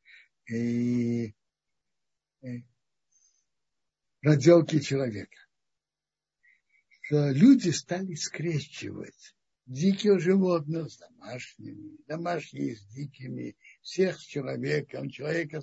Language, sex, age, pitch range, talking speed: Russian, male, 60-79, 130-195 Hz, 75 wpm